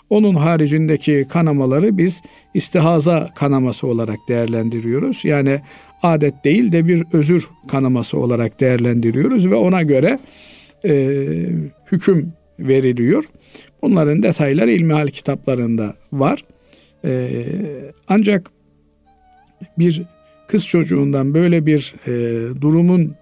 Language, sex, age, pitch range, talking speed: Turkish, male, 50-69, 135-180 Hz, 95 wpm